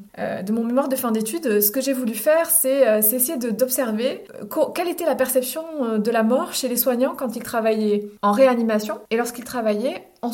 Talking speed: 240 wpm